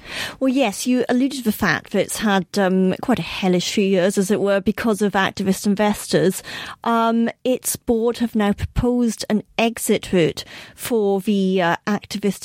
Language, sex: English, female